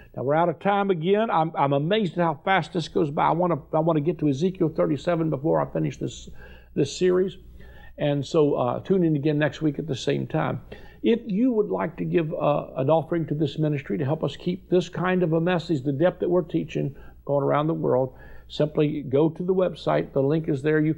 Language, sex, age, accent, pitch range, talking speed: English, male, 60-79, American, 140-170 Hz, 235 wpm